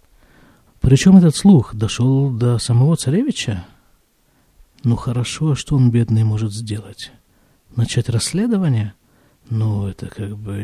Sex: male